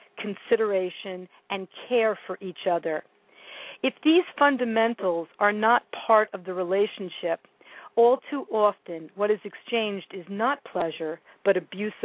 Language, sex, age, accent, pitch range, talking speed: English, female, 50-69, American, 195-245 Hz, 130 wpm